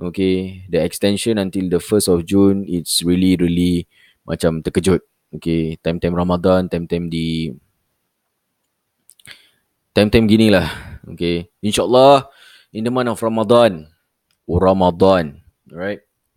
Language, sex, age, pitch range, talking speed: Malay, male, 20-39, 85-105 Hz, 105 wpm